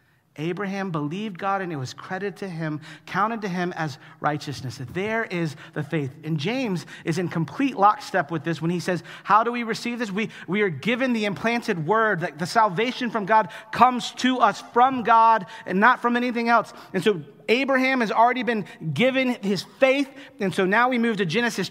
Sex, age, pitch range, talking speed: male, 40-59, 155-245 Hz, 200 wpm